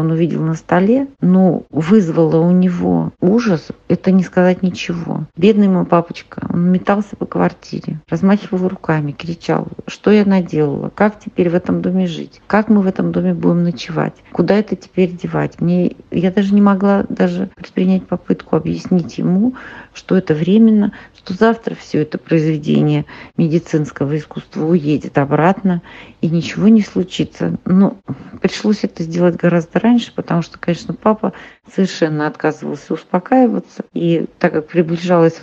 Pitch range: 160-195 Hz